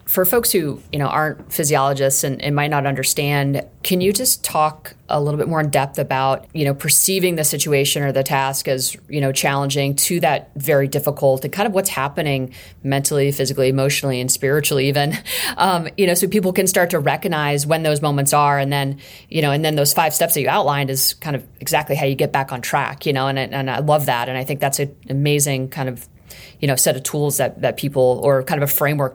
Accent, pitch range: American, 135-155 Hz